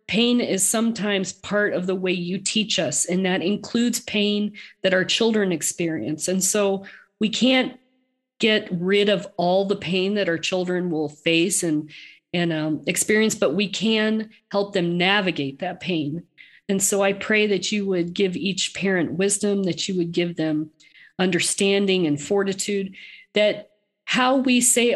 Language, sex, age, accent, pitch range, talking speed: English, female, 40-59, American, 170-205 Hz, 165 wpm